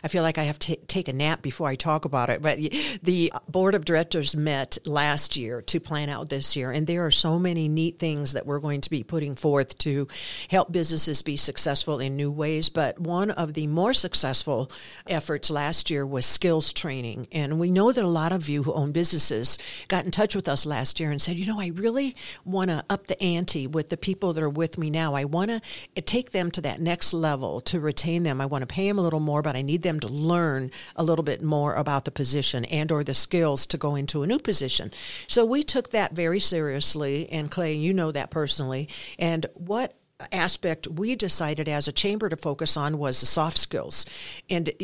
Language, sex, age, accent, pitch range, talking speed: English, female, 50-69, American, 145-175 Hz, 225 wpm